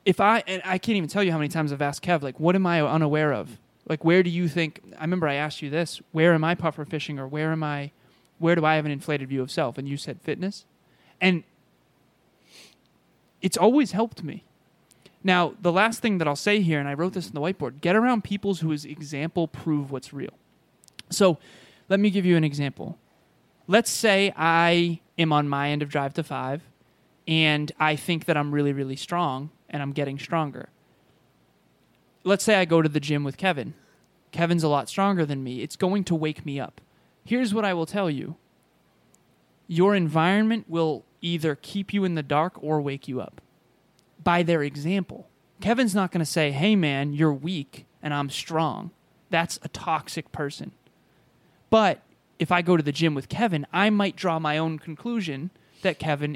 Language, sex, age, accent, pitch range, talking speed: English, male, 20-39, American, 145-185 Hz, 200 wpm